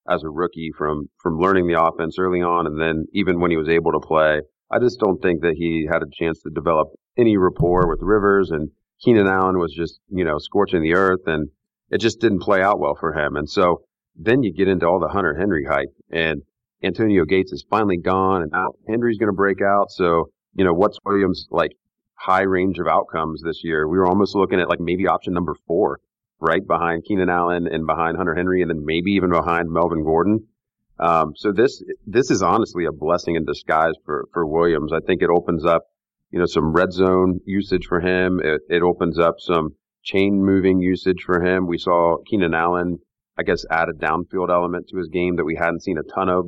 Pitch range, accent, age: 85-95 Hz, American, 40-59